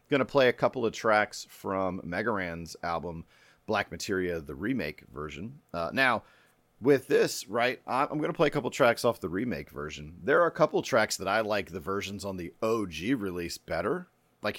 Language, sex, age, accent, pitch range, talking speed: English, male, 40-59, American, 80-110 Hz, 195 wpm